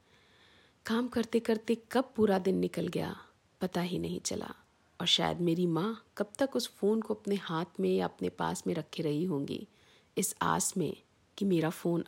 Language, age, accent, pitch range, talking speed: Hindi, 50-69, native, 155-225 Hz, 185 wpm